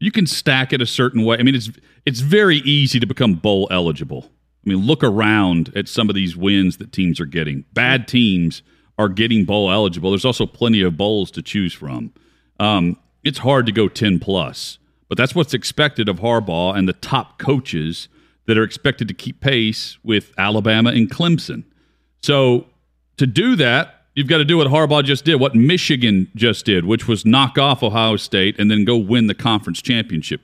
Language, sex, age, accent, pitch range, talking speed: English, male, 40-59, American, 95-135 Hz, 195 wpm